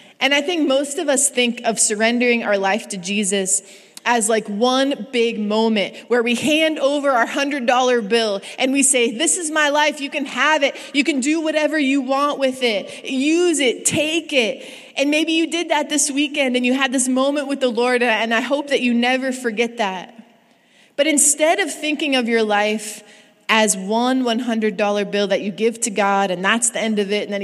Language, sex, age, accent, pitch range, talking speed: English, female, 20-39, American, 205-265 Hz, 210 wpm